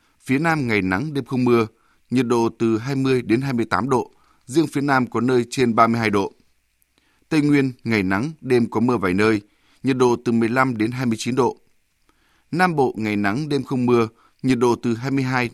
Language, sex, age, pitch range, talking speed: Vietnamese, male, 20-39, 110-135 Hz, 190 wpm